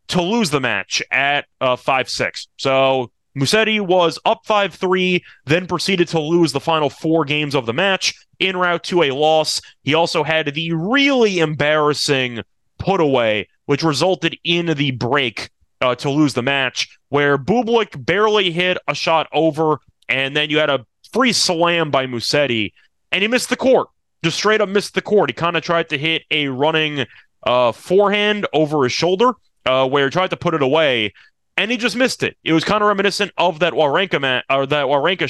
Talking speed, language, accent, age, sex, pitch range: 180 wpm, English, American, 30-49, male, 135-180 Hz